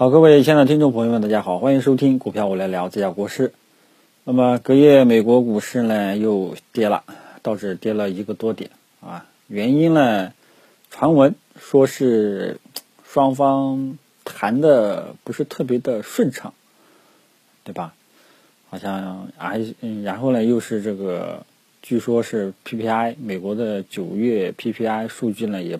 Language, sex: Chinese, male